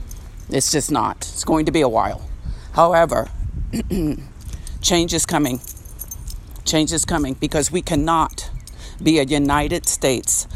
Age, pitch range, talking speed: 50-69, 120-170 Hz, 130 wpm